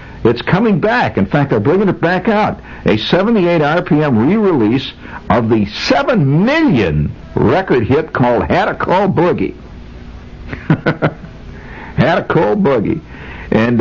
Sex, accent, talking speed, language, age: male, American, 130 wpm, English, 60-79